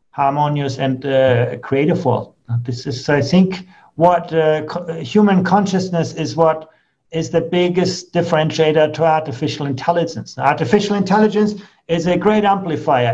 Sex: male